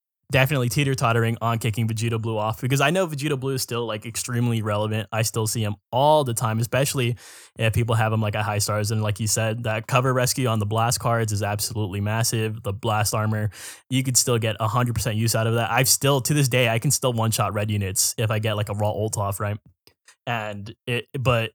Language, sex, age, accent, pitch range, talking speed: English, male, 10-29, American, 115-135 Hz, 230 wpm